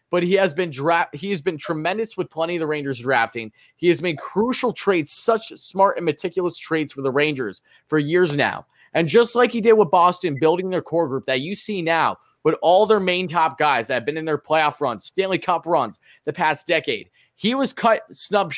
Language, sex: English, male